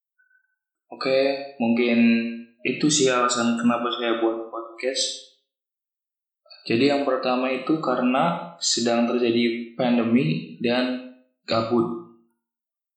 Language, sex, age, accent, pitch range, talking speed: Indonesian, male, 20-39, native, 120-140 Hz, 95 wpm